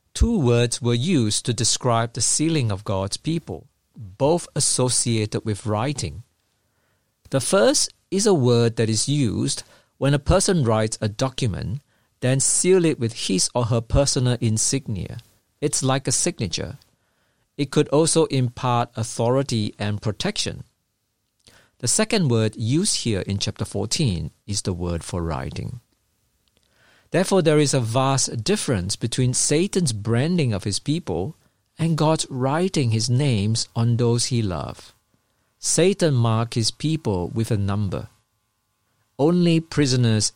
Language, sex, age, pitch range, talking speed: English, male, 50-69, 105-135 Hz, 135 wpm